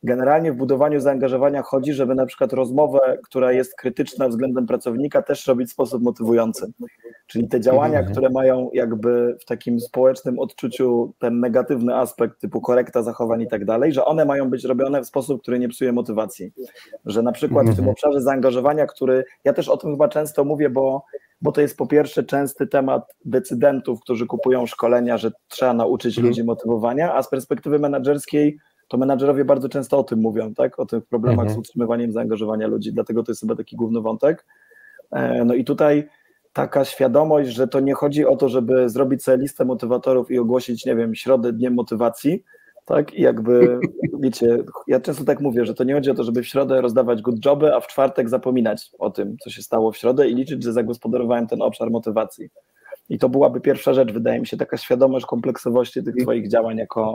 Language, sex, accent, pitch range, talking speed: Polish, male, native, 120-140 Hz, 190 wpm